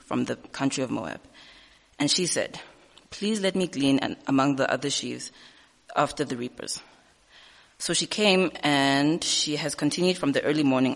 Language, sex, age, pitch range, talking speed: English, female, 20-39, 130-155 Hz, 165 wpm